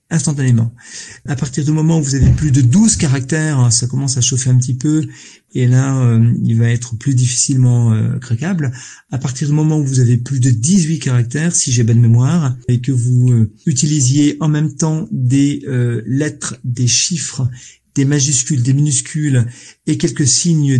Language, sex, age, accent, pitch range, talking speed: French, male, 40-59, French, 120-155 Hz, 185 wpm